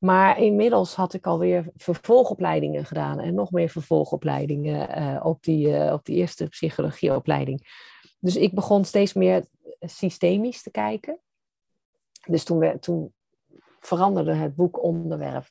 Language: Dutch